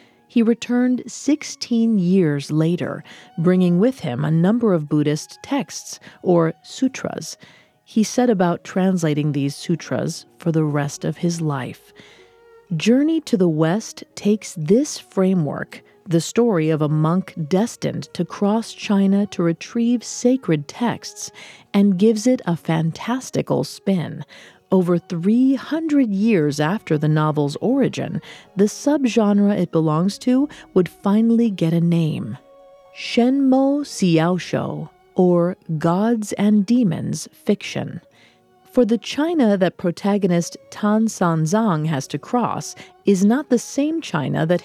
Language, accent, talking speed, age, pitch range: English, American, 125 wpm, 40-59, 165-230 Hz